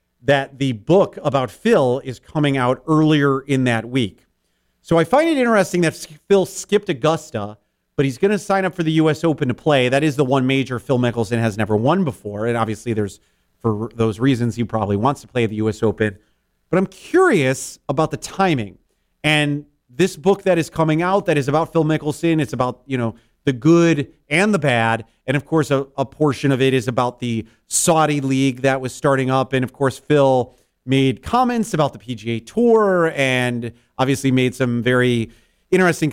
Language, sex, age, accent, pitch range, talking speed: English, male, 40-59, American, 125-170 Hz, 195 wpm